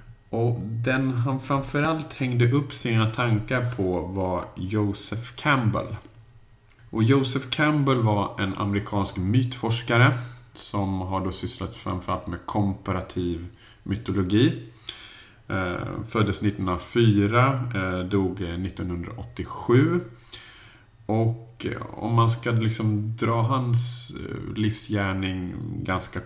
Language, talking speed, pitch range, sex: Swedish, 90 wpm, 100-120 Hz, male